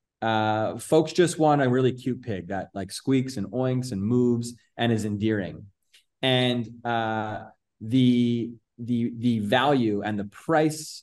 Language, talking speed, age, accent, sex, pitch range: English, 145 wpm, 20-39, American, male, 95-115 Hz